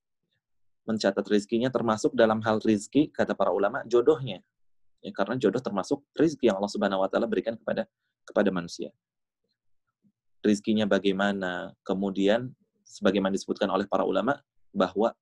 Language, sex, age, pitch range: Indonesian, male, 20-39, 95-115 Hz